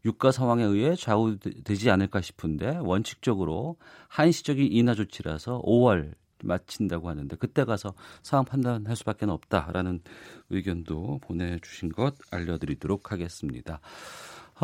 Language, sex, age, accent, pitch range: Korean, male, 40-59, native, 95-135 Hz